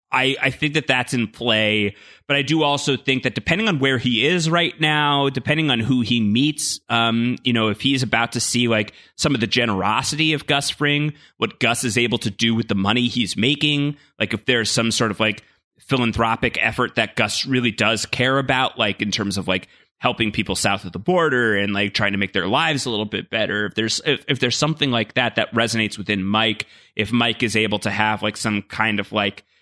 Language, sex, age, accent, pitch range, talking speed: English, male, 30-49, American, 105-130 Hz, 225 wpm